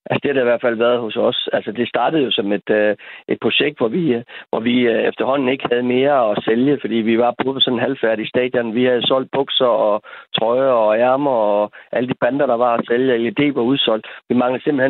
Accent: native